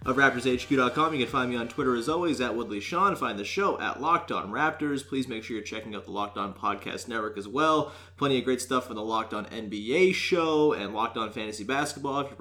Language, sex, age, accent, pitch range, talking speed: English, male, 30-49, American, 105-145 Hz, 235 wpm